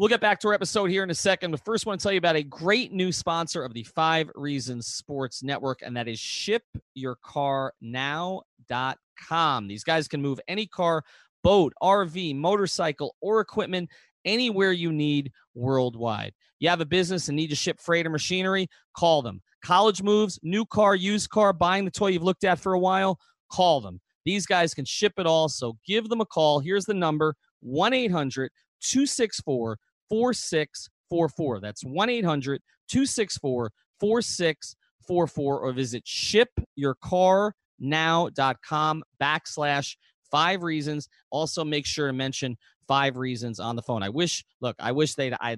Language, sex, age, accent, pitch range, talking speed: English, male, 30-49, American, 130-190 Hz, 160 wpm